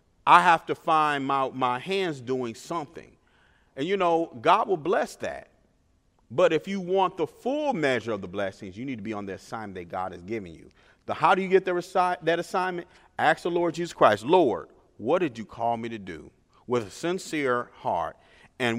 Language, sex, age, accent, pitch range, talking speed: English, male, 40-59, American, 105-165 Hz, 205 wpm